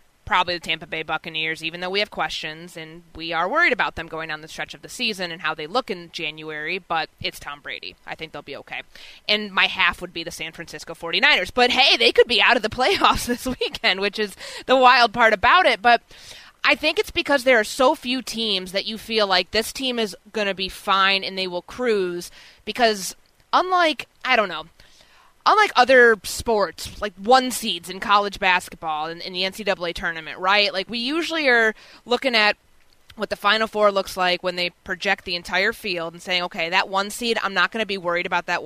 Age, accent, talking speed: 20-39, American, 220 wpm